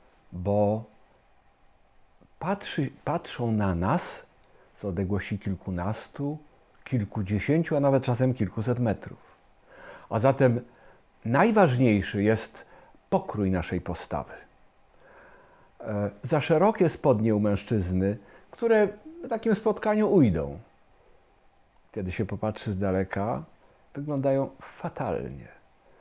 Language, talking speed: Polish, 85 wpm